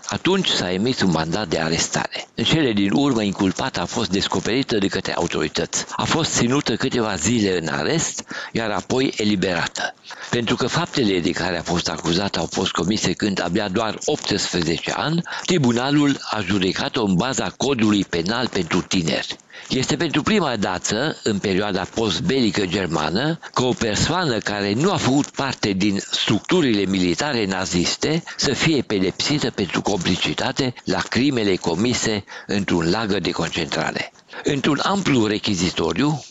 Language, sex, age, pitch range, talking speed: Romanian, male, 60-79, 95-130 Hz, 145 wpm